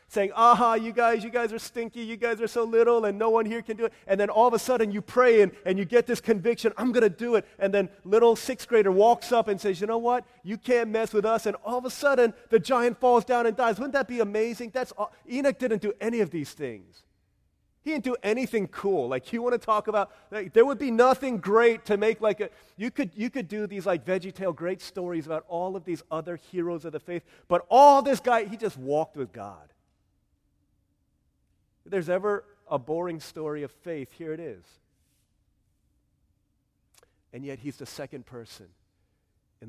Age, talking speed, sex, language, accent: 30-49, 220 wpm, male, English, American